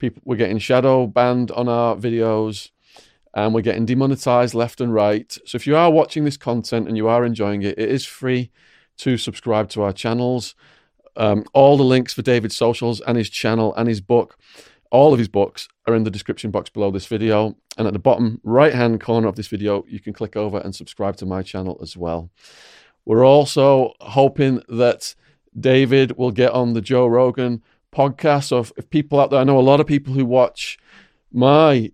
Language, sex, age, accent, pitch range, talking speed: English, male, 30-49, British, 110-135 Hz, 195 wpm